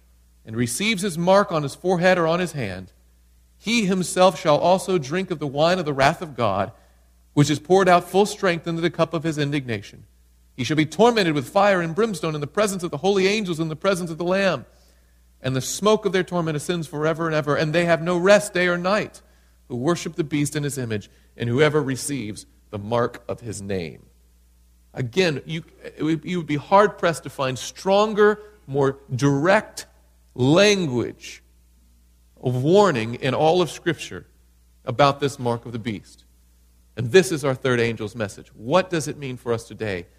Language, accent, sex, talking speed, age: English, American, male, 195 wpm, 40-59